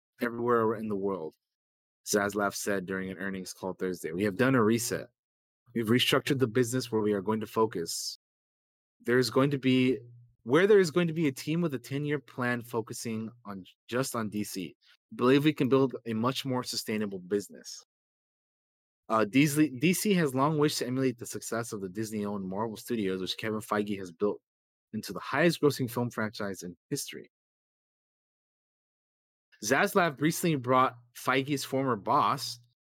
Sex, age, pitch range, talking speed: male, 20-39, 105-135 Hz, 165 wpm